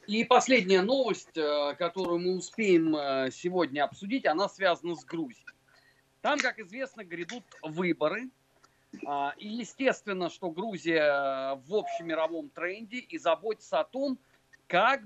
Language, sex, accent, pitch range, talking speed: Russian, male, native, 175-265 Hz, 115 wpm